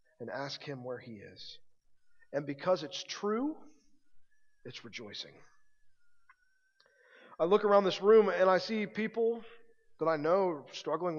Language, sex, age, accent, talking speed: English, male, 40-59, American, 140 wpm